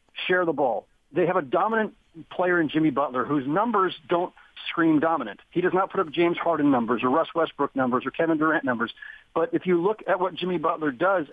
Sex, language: male, English